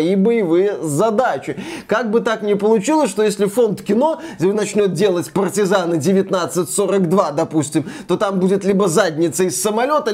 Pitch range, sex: 185-240 Hz, male